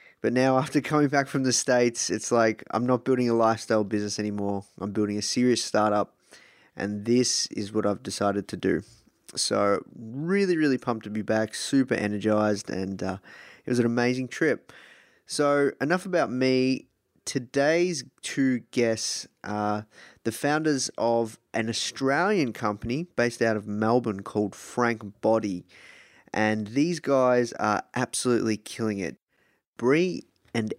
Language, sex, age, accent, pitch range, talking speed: English, male, 20-39, Australian, 105-130 Hz, 150 wpm